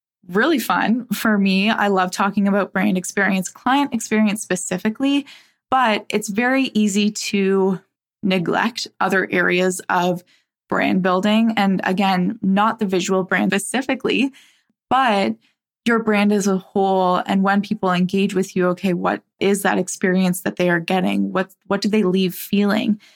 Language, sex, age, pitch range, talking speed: English, female, 10-29, 190-220 Hz, 150 wpm